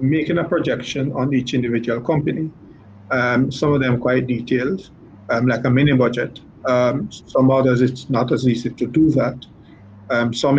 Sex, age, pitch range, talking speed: male, 50-69, 120-135 Hz, 170 wpm